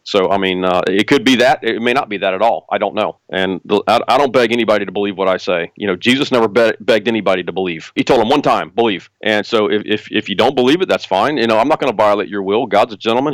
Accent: American